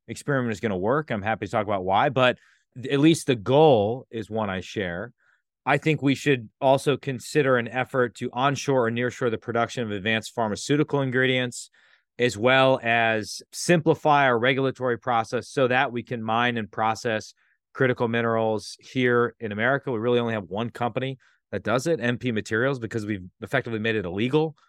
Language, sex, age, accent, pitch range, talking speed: English, male, 30-49, American, 115-140 Hz, 180 wpm